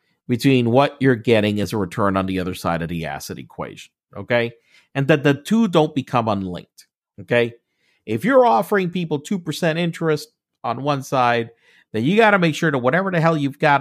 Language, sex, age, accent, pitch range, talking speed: English, male, 50-69, American, 135-170 Hz, 195 wpm